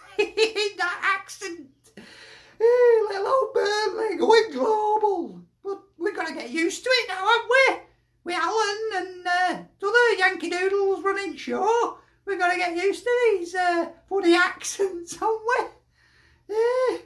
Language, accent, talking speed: English, British, 150 wpm